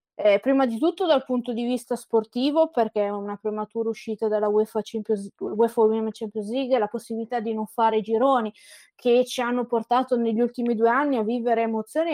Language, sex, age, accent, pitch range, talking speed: Italian, female, 20-39, native, 220-260 Hz, 185 wpm